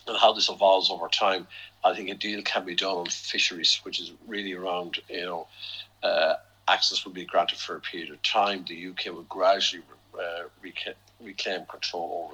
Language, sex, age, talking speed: English, male, 50-69, 190 wpm